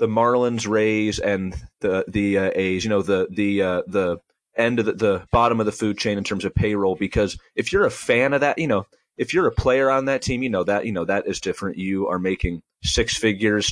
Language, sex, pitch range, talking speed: English, male, 95-115 Hz, 245 wpm